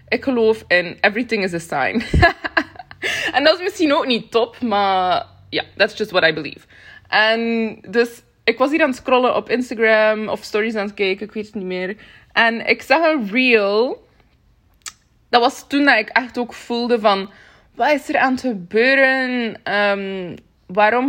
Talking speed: 175 wpm